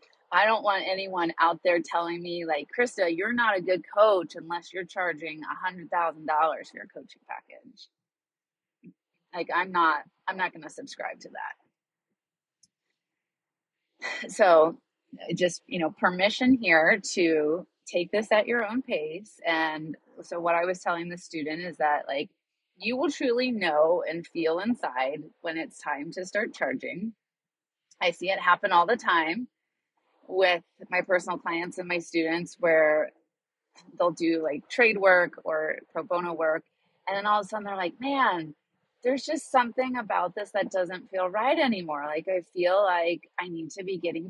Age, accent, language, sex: 30-49, American, English, female